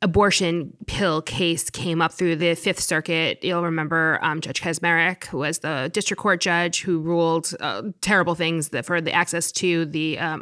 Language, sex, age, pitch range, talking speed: English, female, 30-49, 160-190 Hz, 180 wpm